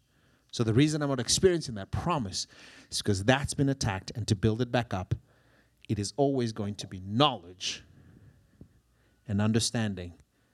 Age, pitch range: 30-49, 110-140 Hz